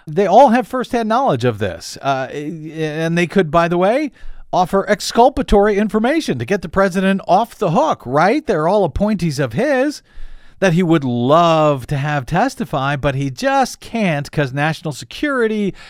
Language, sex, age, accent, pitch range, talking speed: English, male, 50-69, American, 135-205 Hz, 165 wpm